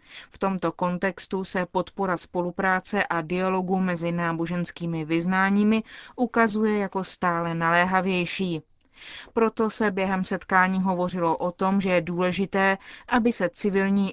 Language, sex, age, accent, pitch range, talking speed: Czech, female, 30-49, native, 175-195 Hz, 120 wpm